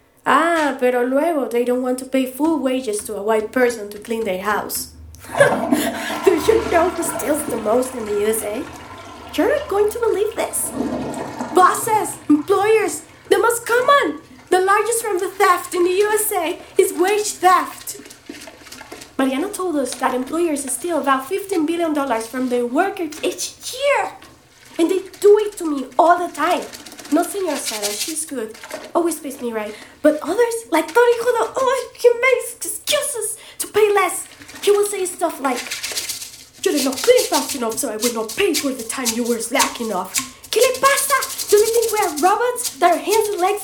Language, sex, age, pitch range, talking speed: English, female, 20-39, 265-395 Hz, 180 wpm